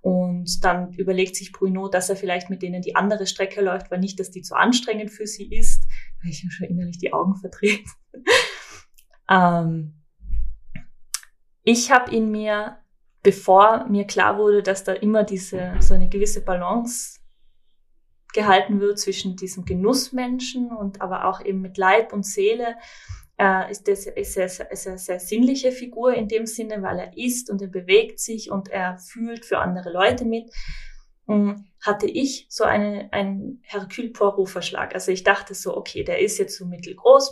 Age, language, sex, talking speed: 20-39, German, female, 165 wpm